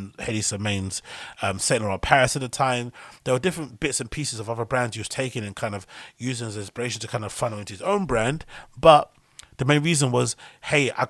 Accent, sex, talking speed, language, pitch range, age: British, male, 235 wpm, English, 105-130 Hz, 30-49